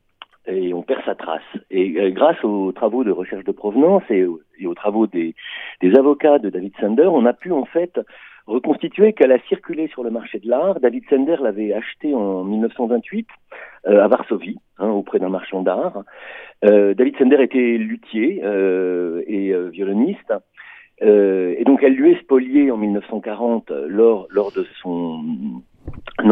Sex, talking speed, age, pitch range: male, 165 wpm, 50-69, 95-145 Hz